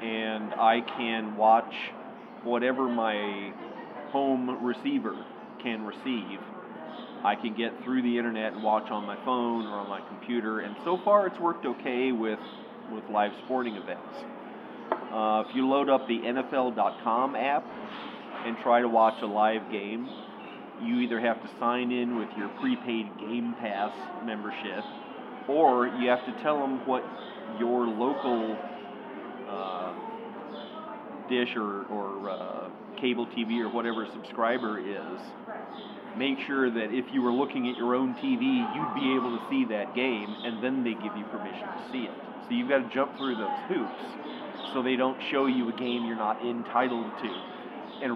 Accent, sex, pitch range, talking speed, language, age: American, male, 110-130 Hz, 160 wpm, English, 40-59